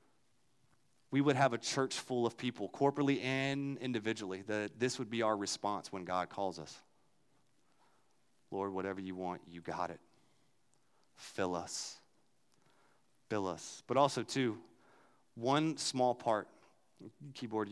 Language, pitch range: English, 95-135 Hz